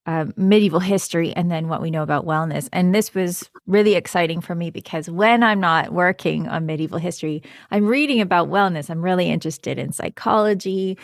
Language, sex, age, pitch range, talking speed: English, female, 20-39, 165-200 Hz, 185 wpm